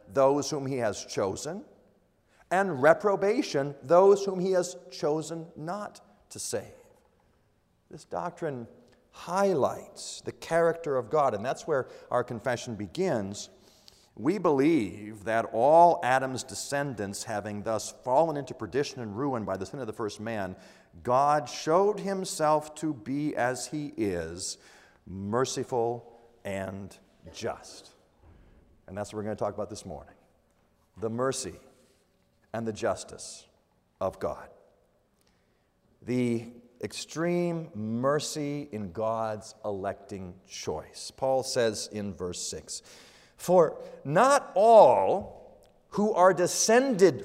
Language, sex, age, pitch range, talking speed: English, male, 40-59, 110-175 Hz, 120 wpm